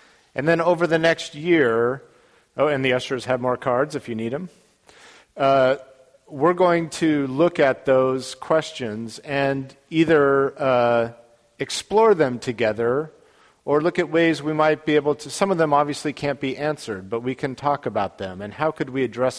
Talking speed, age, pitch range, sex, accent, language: 180 wpm, 50-69, 110-135 Hz, male, American, English